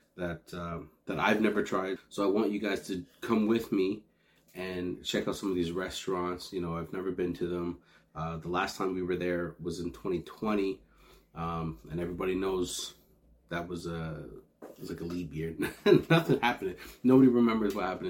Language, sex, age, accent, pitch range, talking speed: English, male, 30-49, American, 85-100 Hz, 190 wpm